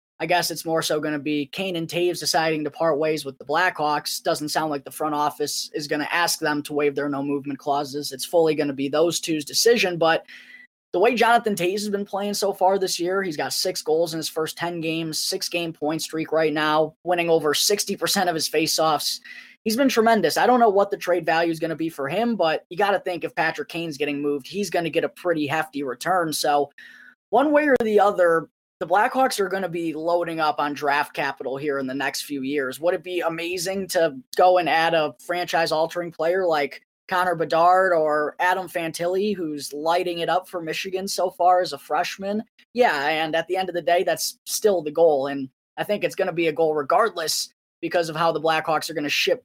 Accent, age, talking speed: American, 20-39, 235 wpm